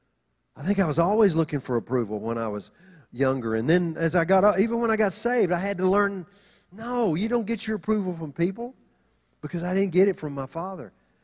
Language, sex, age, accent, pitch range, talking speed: English, male, 40-59, American, 150-205 Hz, 225 wpm